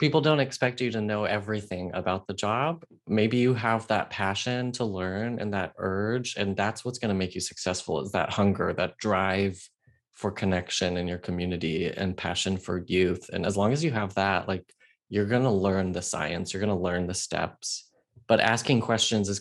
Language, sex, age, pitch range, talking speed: English, male, 20-39, 95-125 Hz, 205 wpm